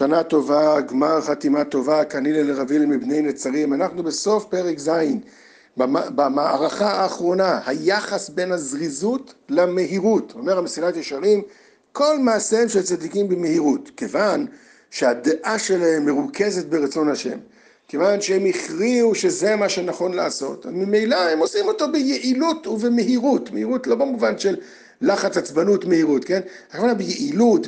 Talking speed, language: 125 wpm, Hebrew